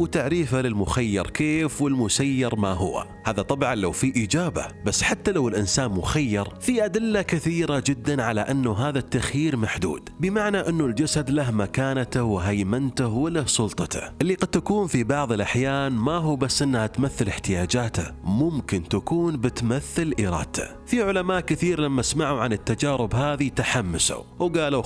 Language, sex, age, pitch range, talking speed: Arabic, male, 30-49, 115-155 Hz, 140 wpm